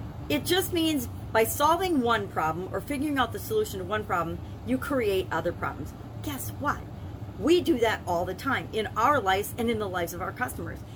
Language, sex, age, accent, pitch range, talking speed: English, female, 40-59, American, 195-290 Hz, 205 wpm